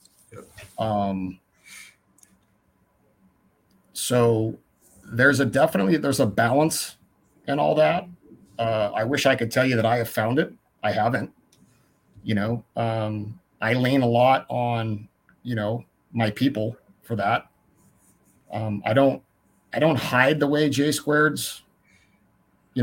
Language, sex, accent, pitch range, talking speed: English, male, American, 110-135 Hz, 130 wpm